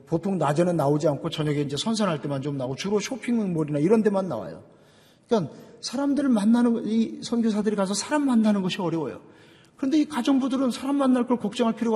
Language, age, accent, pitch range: Korean, 40-59, native, 145-225 Hz